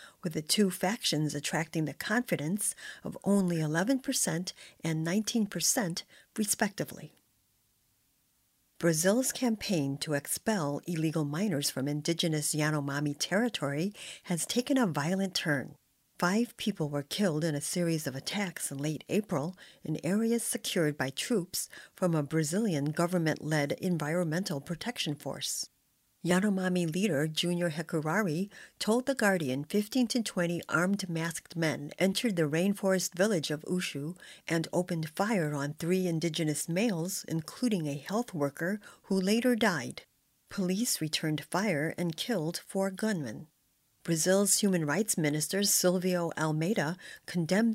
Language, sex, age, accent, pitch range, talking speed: English, female, 50-69, American, 155-200 Hz, 125 wpm